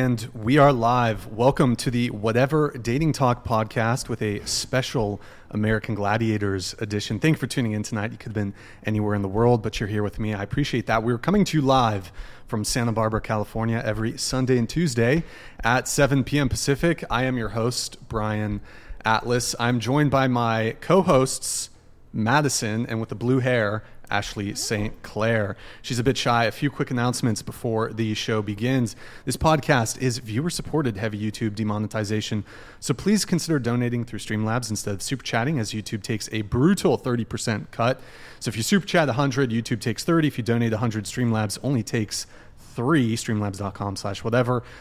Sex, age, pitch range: male, 30-49, 110-135 Hz